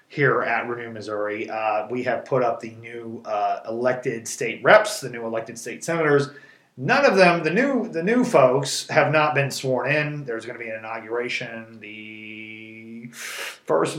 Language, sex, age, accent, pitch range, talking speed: English, male, 30-49, American, 115-150 Hz, 175 wpm